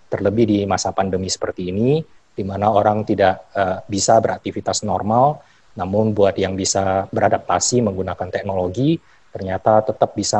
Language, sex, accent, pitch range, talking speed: Indonesian, male, native, 95-110 Hz, 140 wpm